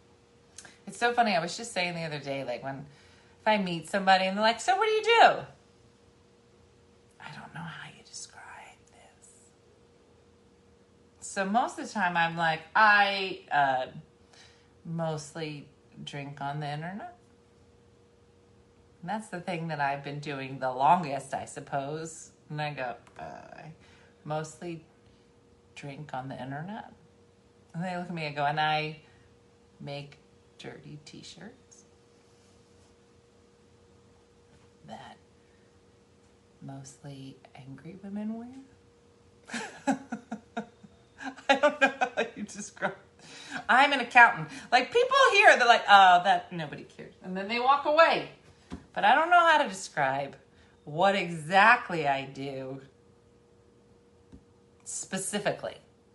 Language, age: English, 30-49